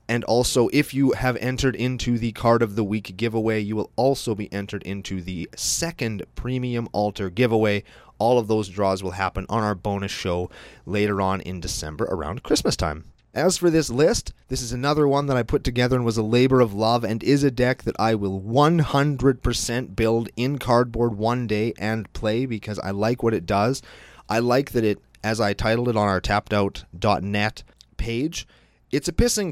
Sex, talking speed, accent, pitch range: male, 195 wpm, American, 105-135 Hz